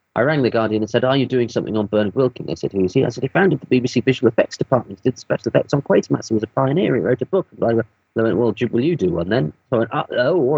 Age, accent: 30-49, British